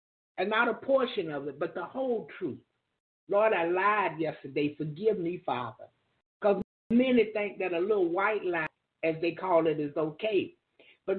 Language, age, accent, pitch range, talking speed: English, 50-69, American, 165-215 Hz, 170 wpm